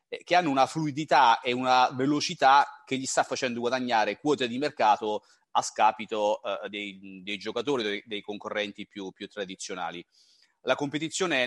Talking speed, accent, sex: 150 wpm, native, male